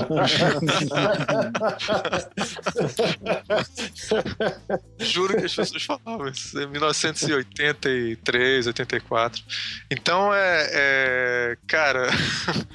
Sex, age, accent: male, 20-39, Brazilian